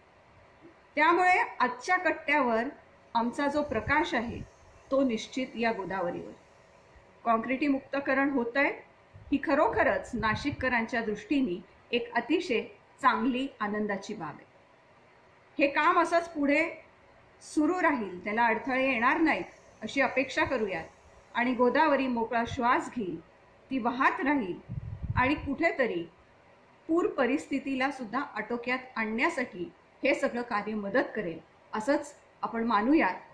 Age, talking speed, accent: 40-59, 105 wpm, native